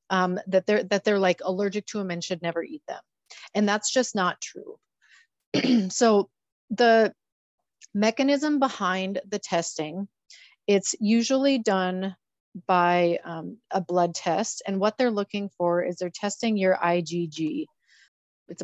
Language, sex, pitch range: English, female, 180-225 Hz